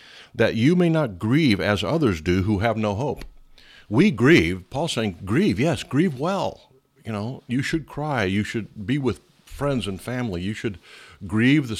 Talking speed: 185 wpm